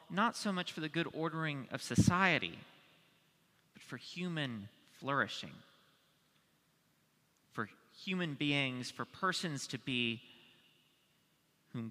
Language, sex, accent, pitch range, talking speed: English, male, American, 130-175 Hz, 105 wpm